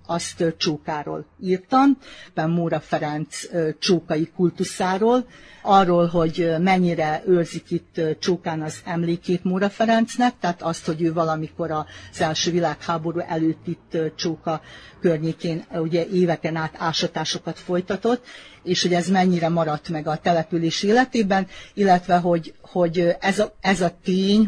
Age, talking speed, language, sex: 50-69, 120 wpm, Hungarian, female